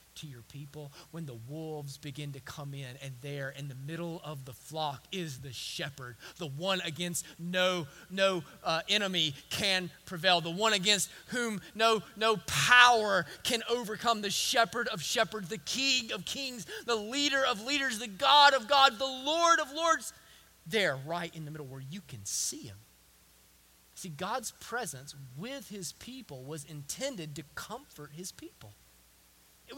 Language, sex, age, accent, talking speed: English, male, 30-49, American, 165 wpm